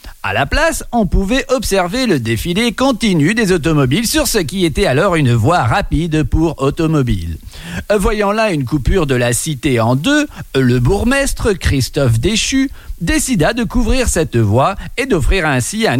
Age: 50-69